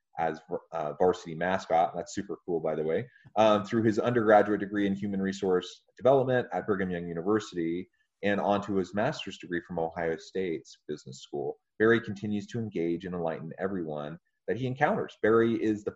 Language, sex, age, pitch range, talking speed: English, male, 30-49, 85-110 Hz, 175 wpm